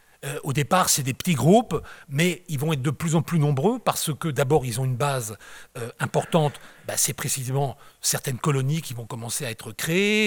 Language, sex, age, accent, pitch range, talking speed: French, male, 40-59, French, 125-170 Hz, 205 wpm